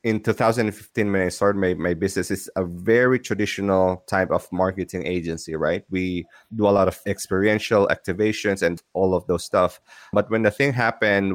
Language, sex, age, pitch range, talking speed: English, male, 20-39, 90-105 Hz, 180 wpm